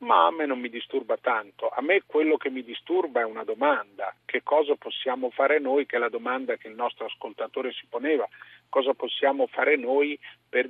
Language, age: Italian, 40-59